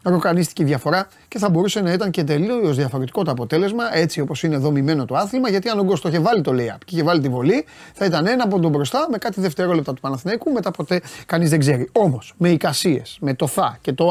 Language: Greek